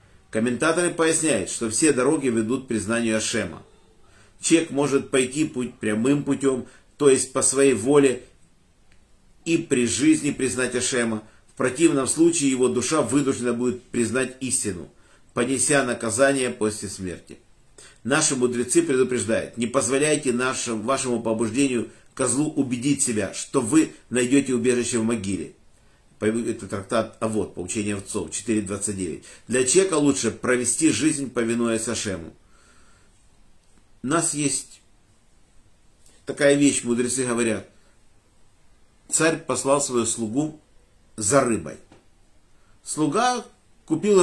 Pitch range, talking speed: 105-140 Hz, 110 wpm